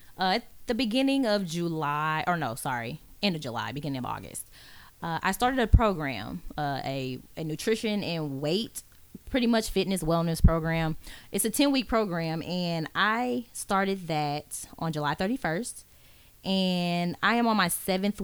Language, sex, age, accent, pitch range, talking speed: English, female, 20-39, American, 150-200 Hz, 160 wpm